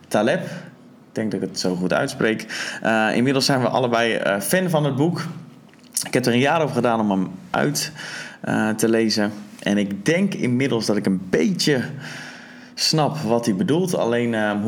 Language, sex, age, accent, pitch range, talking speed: Dutch, male, 20-39, Dutch, 100-145 Hz, 185 wpm